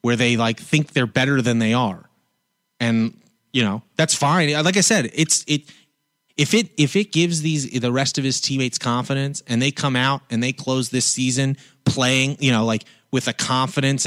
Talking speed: 200 wpm